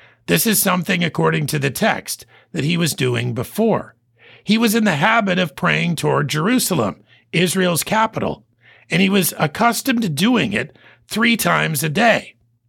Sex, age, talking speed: male, 50-69, 160 wpm